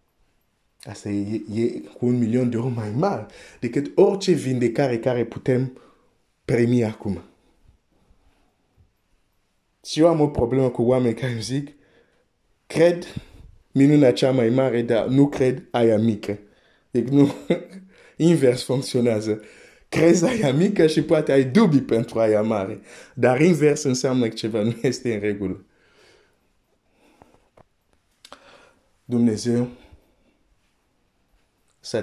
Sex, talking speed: male, 80 wpm